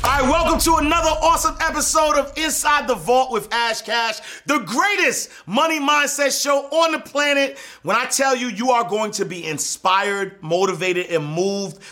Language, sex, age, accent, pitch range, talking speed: English, male, 30-49, American, 160-230 Hz, 175 wpm